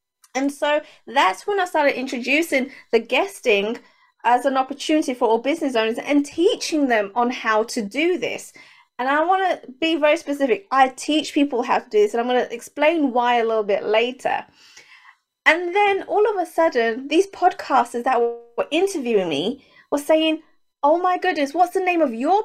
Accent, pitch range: British, 250-335 Hz